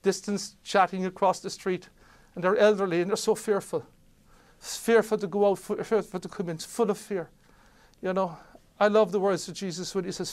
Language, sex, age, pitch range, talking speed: English, male, 60-79, 150-185 Hz, 200 wpm